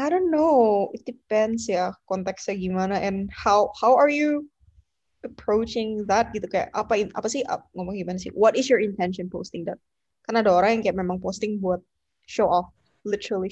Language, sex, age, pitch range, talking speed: Indonesian, female, 20-39, 185-230 Hz, 180 wpm